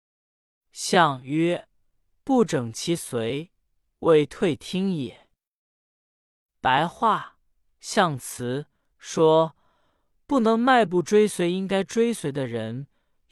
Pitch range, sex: 135-215 Hz, male